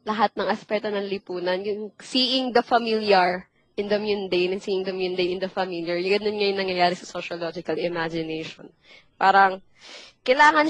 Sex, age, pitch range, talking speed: female, 20-39, 185-225 Hz, 150 wpm